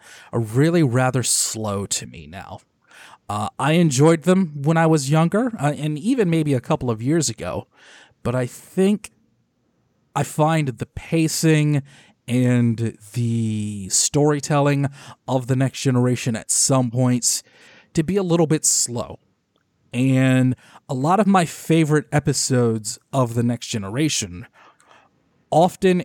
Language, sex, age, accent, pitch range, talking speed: English, male, 30-49, American, 115-145 Hz, 135 wpm